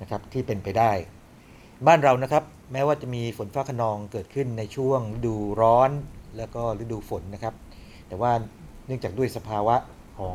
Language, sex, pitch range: Thai, male, 105-130 Hz